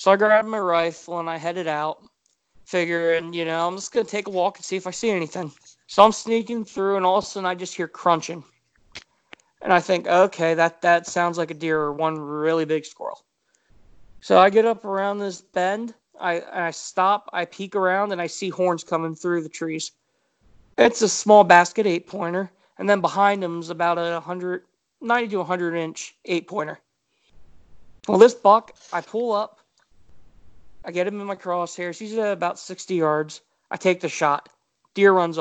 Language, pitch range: English, 170-195 Hz